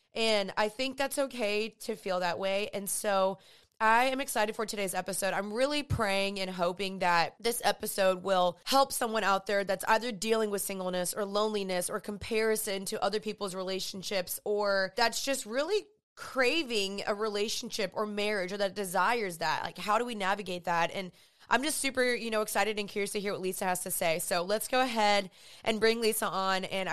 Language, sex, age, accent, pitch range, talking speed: English, female, 20-39, American, 180-225 Hz, 195 wpm